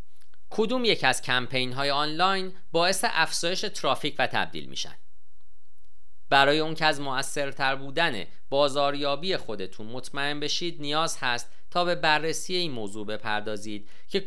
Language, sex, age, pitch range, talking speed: Persian, male, 40-59, 115-155 Hz, 130 wpm